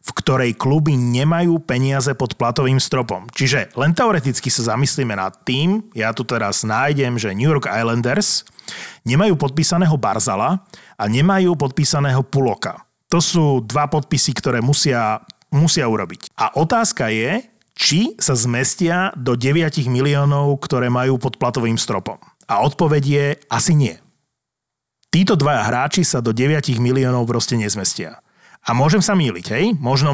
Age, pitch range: 30-49, 125-155 Hz